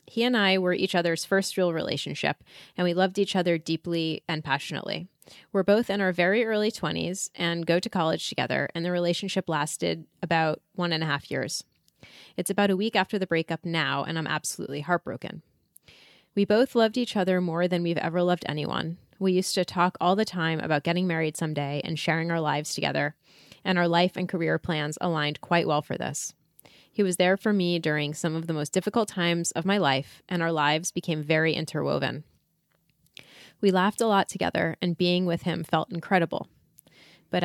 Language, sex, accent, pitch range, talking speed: English, female, American, 160-185 Hz, 195 wpm